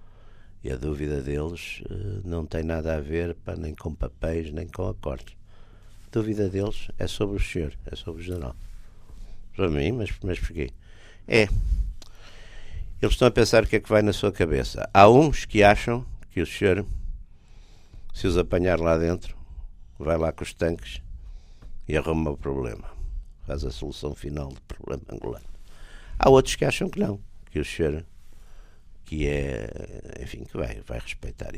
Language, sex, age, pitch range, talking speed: Portuguese, male, 60-79, 70-95 Hz, 165 wpm